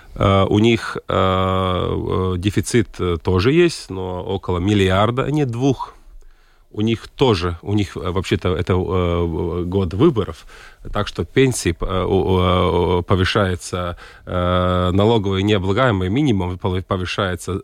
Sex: male